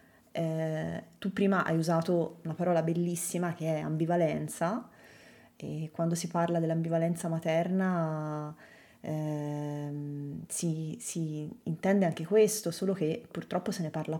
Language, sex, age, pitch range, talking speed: Italian, female, 20-39, 155-185 Hz, 125 wpm